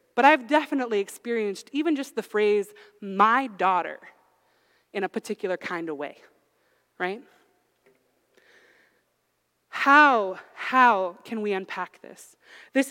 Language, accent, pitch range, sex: English, American, 205-275 Hz, female